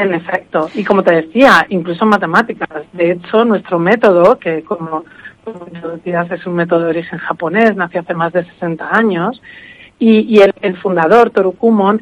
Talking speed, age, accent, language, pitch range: 170 wpm, 50-69, Spanish, Spanish, 175-215 Hz